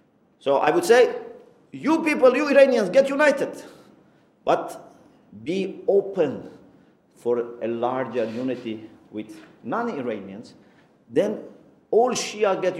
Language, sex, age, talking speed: English, male, 50-69, 110 wpm